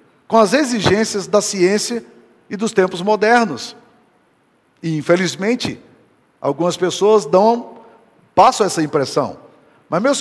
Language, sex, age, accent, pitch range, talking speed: Portuguese, male, 50-69, Brazilian, 180-230 Hz, 110 wpm